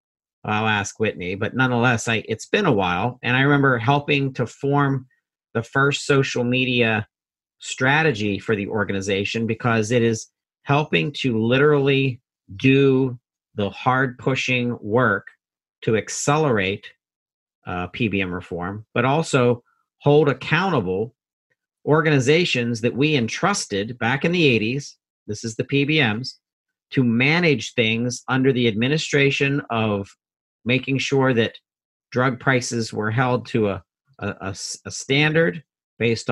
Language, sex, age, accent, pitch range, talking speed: English, male, 40-59, American, 110-140 Hz, 130 wpm